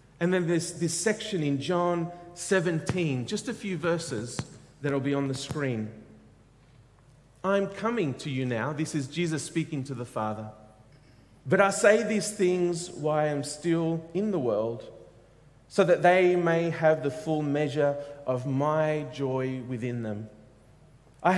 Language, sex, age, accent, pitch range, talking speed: English, male, 40-59, Australian, 135-180 Hz, 155 wpm